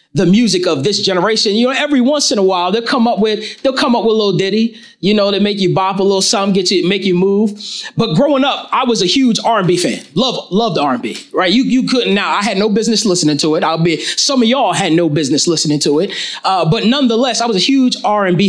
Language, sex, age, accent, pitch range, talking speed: English, male, 30-49, American, 185-245 Hz, 260 wpm